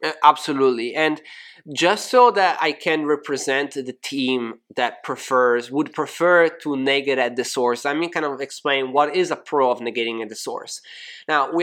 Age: 20-39